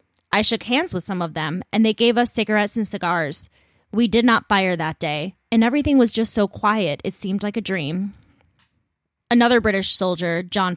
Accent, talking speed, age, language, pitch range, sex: American, 195 wpm, 20-39, English, 185-235 Hz, female